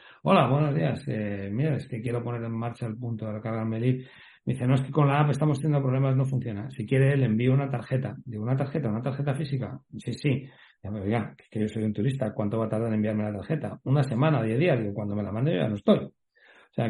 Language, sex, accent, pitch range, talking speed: Spanish, male, Spanish, 110-135 Hz, 270 wpm